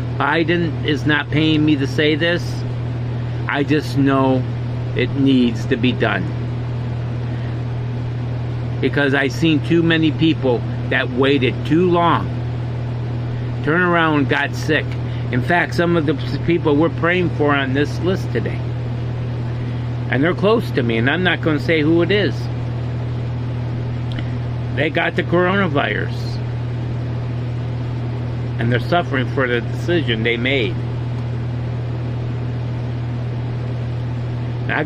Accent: American